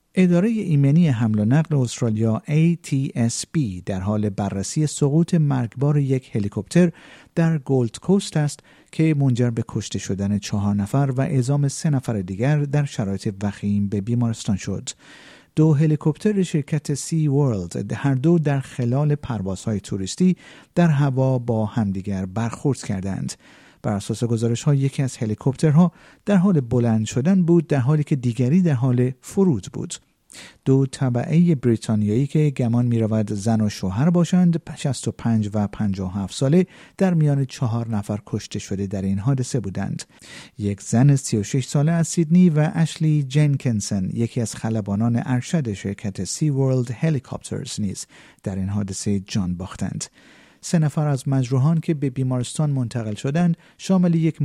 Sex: male